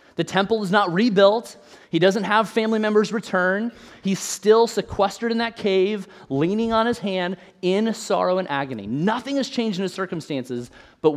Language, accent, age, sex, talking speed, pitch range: English, American, 30-49, male, 170 wpm, 160-205 Hz